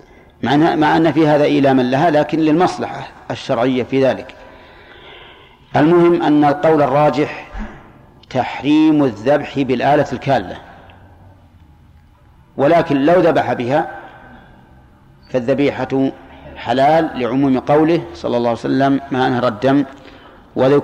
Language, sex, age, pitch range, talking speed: Arabic, male, 50-69, 115-150 Hz, 100 wpm